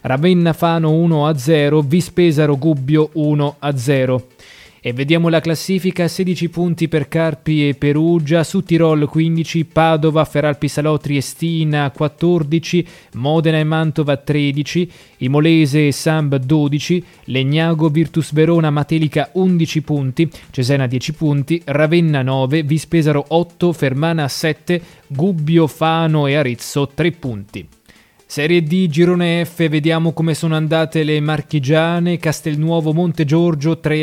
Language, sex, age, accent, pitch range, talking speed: Italian, male, 20-39, native, 145-165 Hz, 125 wpm